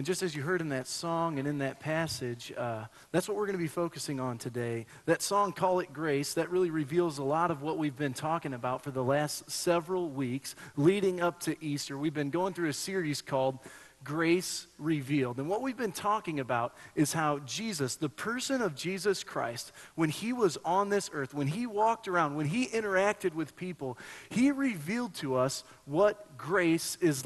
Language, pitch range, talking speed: English, 145-190 Hz, 200 wpm